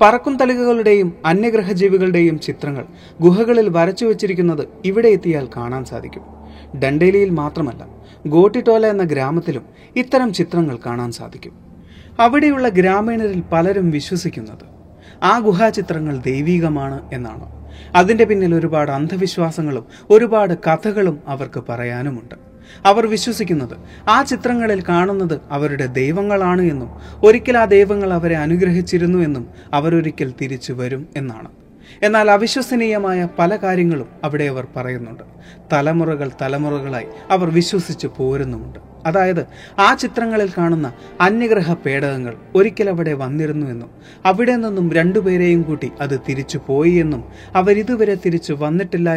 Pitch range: 140-200 Hz